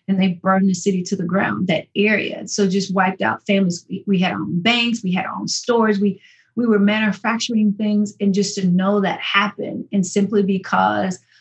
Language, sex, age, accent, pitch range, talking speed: English, female, 30-49, American, 190-225 Hz, 210 wpm